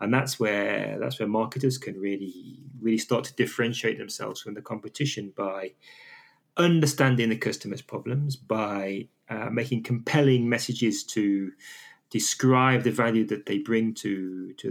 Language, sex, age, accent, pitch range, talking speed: English, male, 30-49, British, 110-135 Hz, 145 wpm